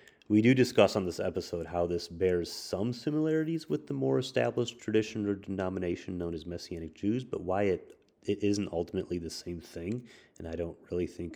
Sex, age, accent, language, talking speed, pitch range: male, 30-49, American, English, 190 wpm, 85-105 Hz